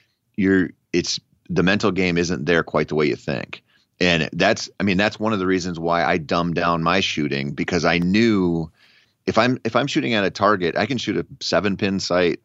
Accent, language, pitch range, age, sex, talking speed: American, English, 80-100 Hz, 30-49, male, 215 wpm